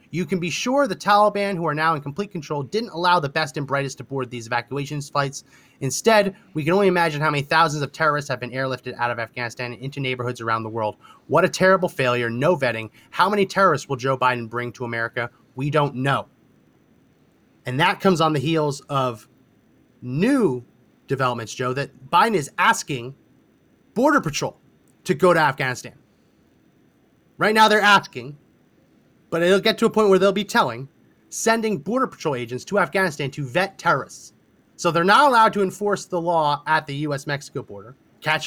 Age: 30-49